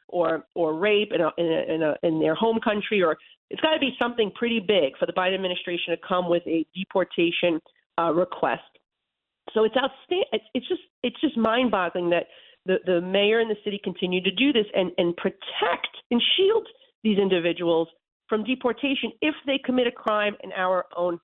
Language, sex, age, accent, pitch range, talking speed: English, female, 40-59, American, 175-230 Hz, 195 wpm